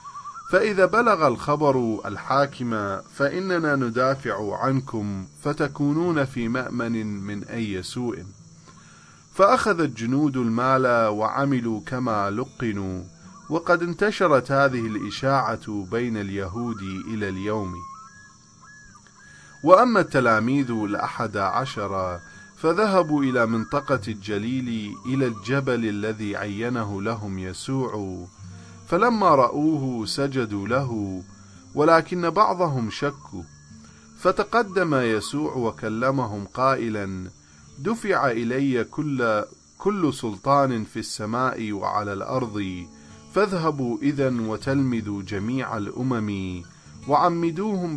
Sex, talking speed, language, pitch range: male, 85 wpm, English, 105-140 Hz